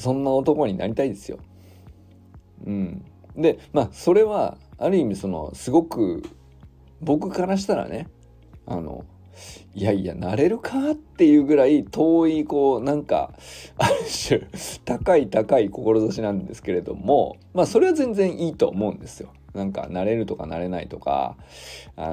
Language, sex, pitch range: Japanese, male, 95-145 Hz